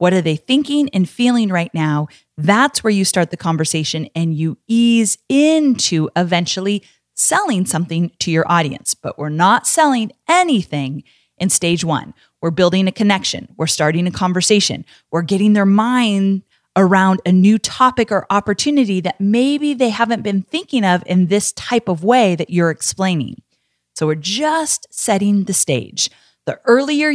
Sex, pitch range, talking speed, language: female, 170-235 Hz, 160 wpm, English